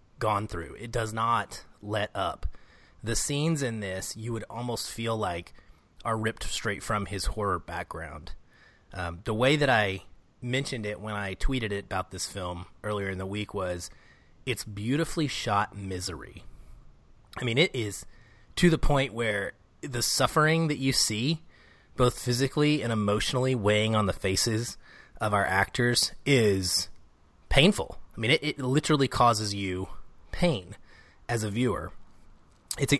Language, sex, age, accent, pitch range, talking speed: English, male, 30-49, American, 95-120 Hz, 155 wpm